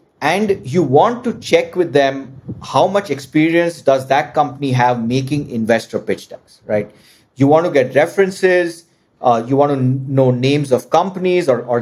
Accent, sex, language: Indian, male, English